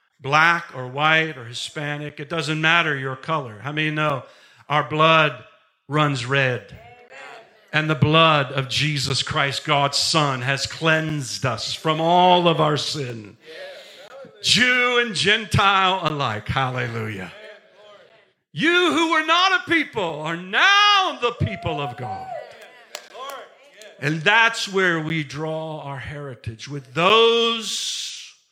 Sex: male